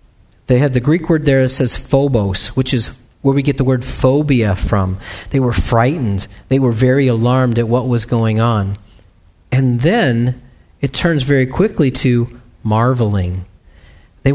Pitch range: 110-155 Hz